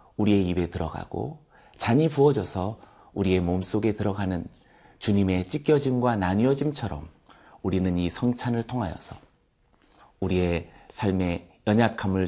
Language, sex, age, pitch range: Korean, male, 40-59, 90-120 Hz